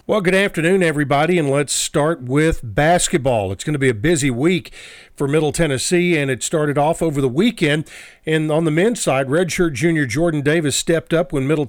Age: 50-69